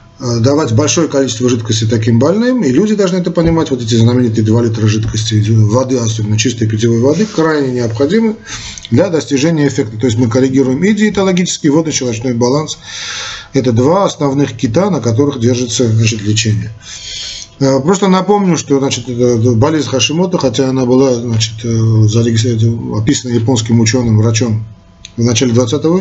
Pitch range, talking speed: 115-145 Hz, 140 wpm